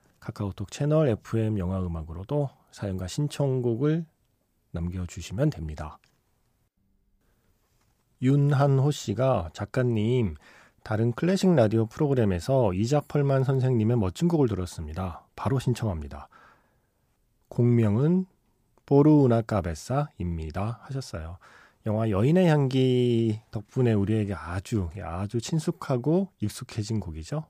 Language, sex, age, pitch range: Korean, male, 40-59, 100-145 Hz